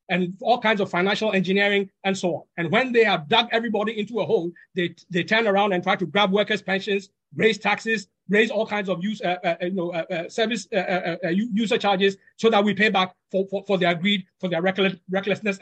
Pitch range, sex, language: 185-220 Hz, male, English